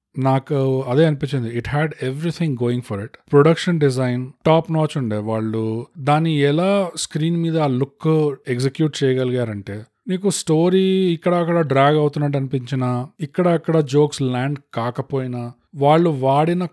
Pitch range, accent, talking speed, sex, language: 125-155 Hz, native, 135 wpm, male, Telugu